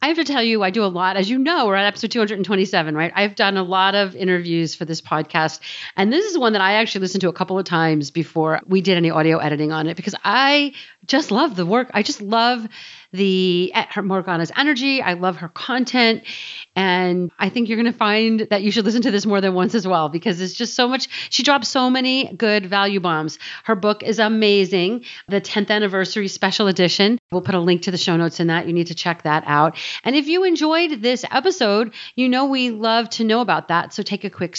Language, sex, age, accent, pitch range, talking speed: English, female, 40-59, American, 175-230 Hz, 235 wpm